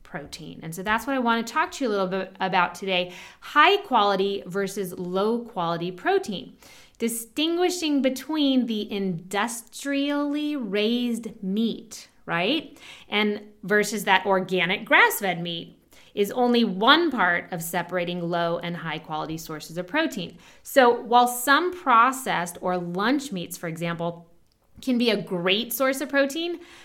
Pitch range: 185-260 Hz